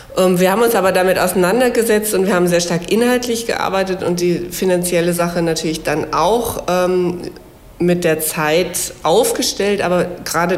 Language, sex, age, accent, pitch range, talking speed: German, female, 50-69, German, 160-185 Hz, 155 wpm